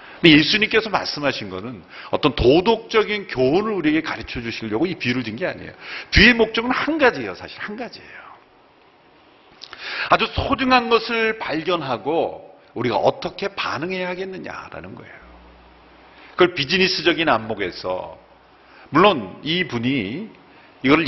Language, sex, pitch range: Korean, male, 120-195 Hz